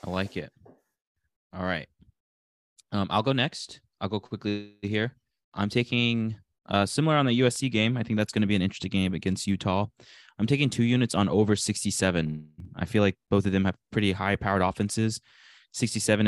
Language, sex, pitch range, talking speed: English, male, 85-105 Hz, 185 wpm